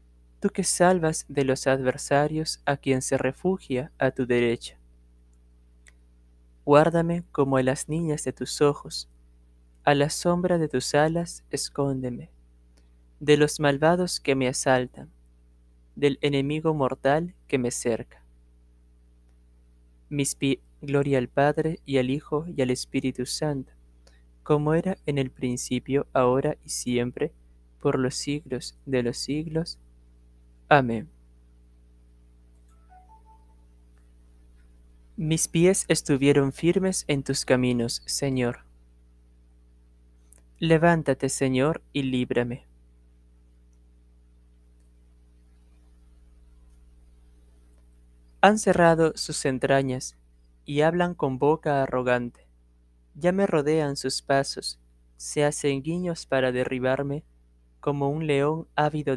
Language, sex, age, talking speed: Spanish, male, 20-39, 100 wpm